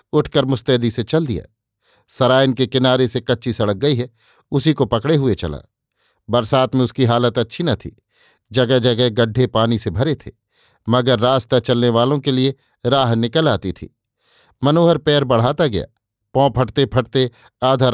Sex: male